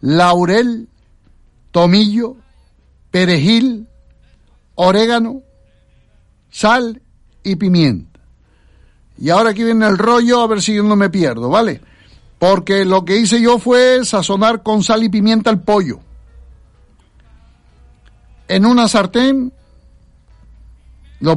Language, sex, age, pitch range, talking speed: Spanish, male, 60-79, 175-225 Hz, 105 wpm